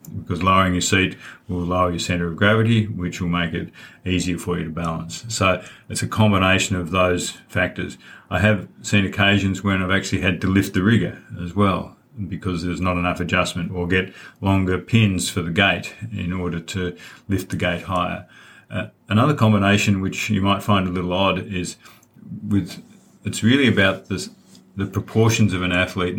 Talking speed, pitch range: 185 wpm, 90-105 Hz